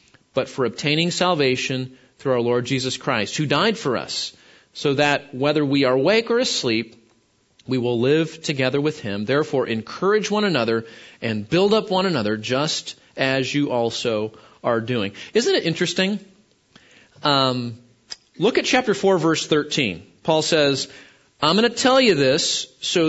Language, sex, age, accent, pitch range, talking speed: English, male, 30-49, American, 140-195 Hz, 160 wpm